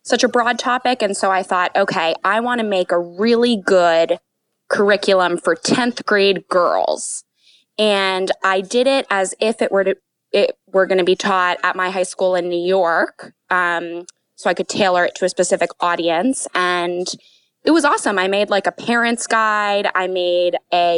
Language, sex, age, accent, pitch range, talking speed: English, female, 20-39, American, 180-215 Hz, 185 wpm